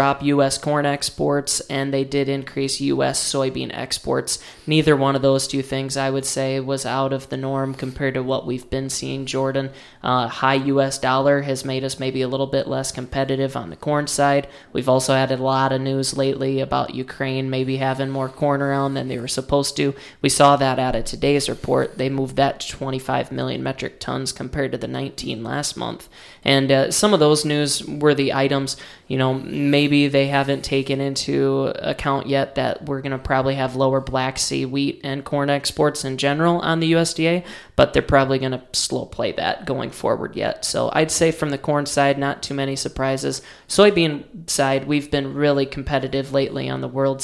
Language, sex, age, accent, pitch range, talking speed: English, male, 20-39, American, 130-140 Hz, 200 wpm